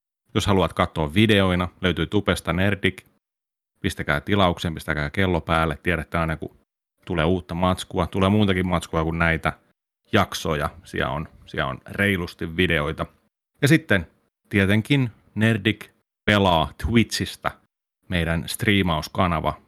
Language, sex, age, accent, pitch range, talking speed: Finnish, male, 30-49, native, 85-105 Hz, 115 wpm